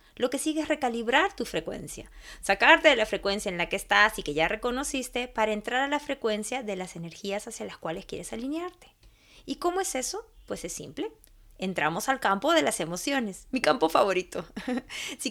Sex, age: female, 20-39